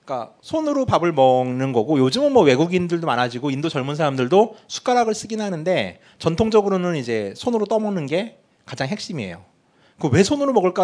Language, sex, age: Korean, male, 30-49